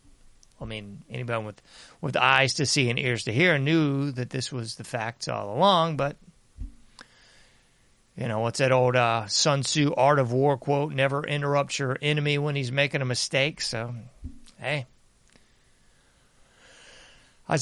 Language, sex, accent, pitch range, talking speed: English, male, American, 120-150 Hz, 155 wpm